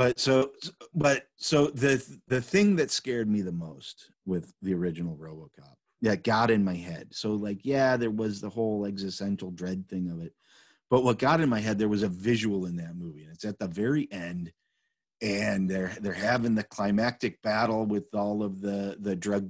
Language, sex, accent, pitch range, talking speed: English, male, American, 100-130 Hz, 200 wpm